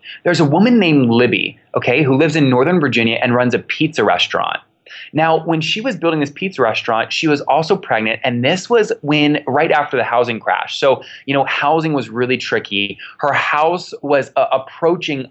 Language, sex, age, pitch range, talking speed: English, male, 20-39, 125-160 Hz, 190 wpm